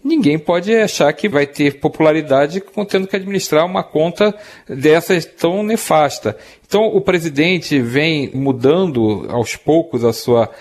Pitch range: 125-165 Hz